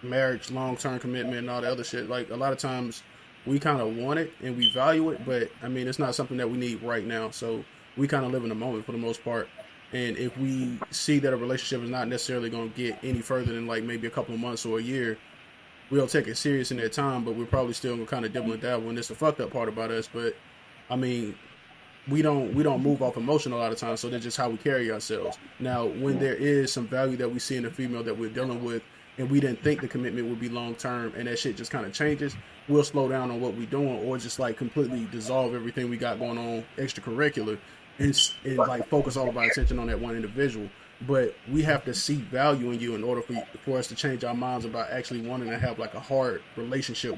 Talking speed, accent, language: 265 wpm, American, English